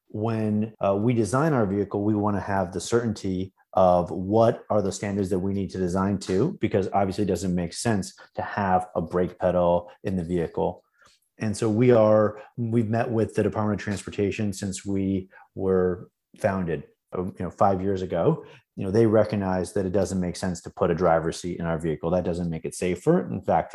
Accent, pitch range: American, 90-105 Hz